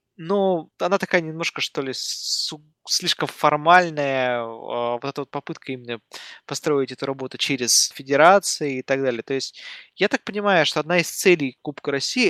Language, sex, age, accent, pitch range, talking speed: Russian, male, 20-39, native, 130-165 Hz, 155 wpm